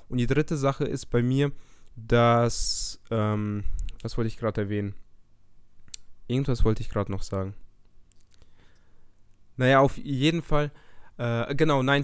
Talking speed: 135 wpm